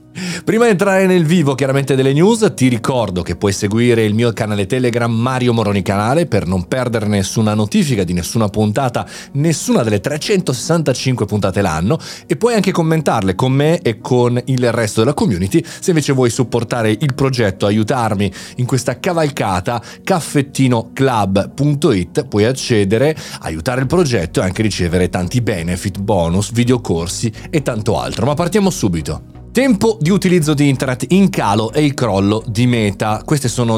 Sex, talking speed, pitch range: male, 155 wpm, 110-150 Hz